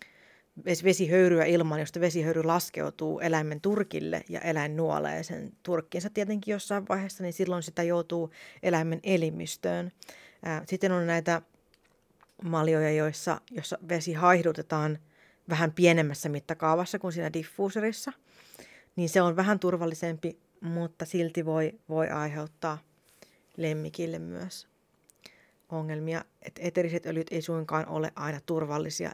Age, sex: 30-49, female